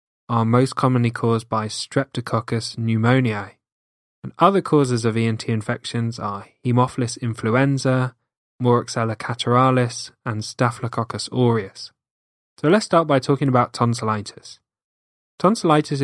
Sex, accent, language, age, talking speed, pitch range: male, British, English, 10-29, 110 wpm, 115-135 Hz